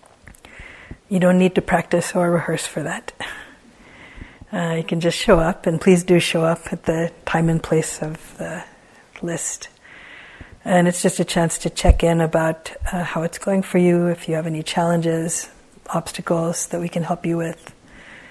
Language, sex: English, female